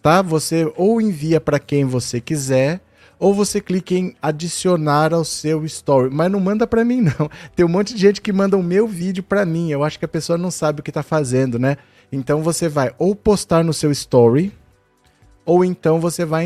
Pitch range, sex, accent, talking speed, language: 140-175 Hz, male, Brazilian, 210 wpm, Portuguese